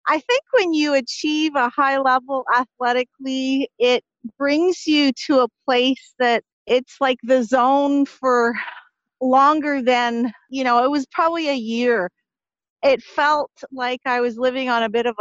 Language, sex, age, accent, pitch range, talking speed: English, female, 40-59, American, 240-290 Hz, 160 wpm